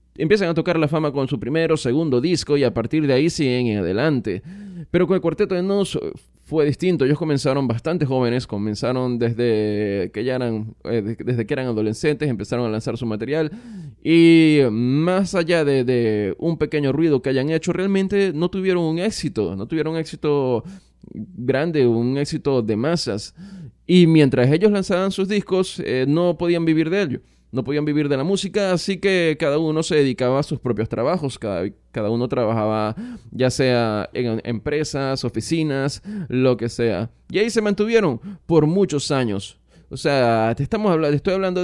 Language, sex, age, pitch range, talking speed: Spanish, male, 20-39, 125-175 Hz, 180 wpm